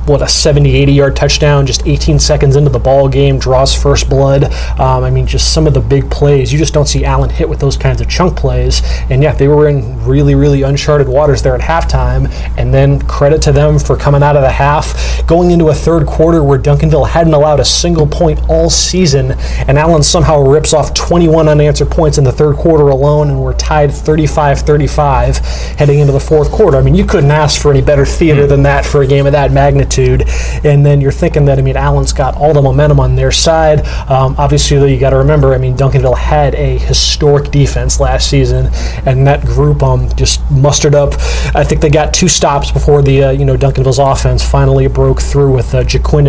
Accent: American